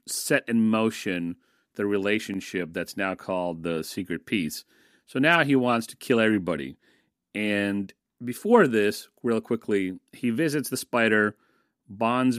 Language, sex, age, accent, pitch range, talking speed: English, male, 40-59, American, 95-115 Hz, 135 wpm